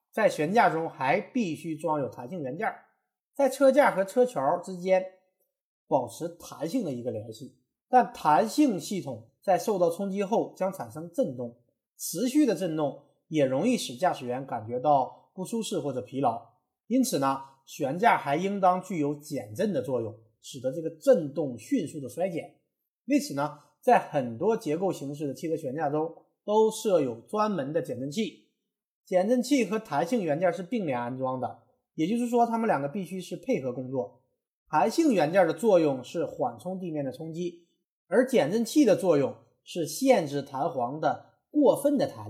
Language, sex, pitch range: Chinese, male, 145-235 Hz